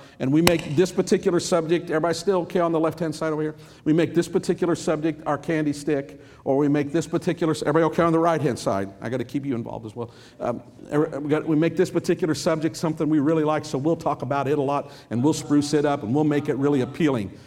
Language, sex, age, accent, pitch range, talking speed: English, male, 50-69, American, 150-185 Hz, 245 wpm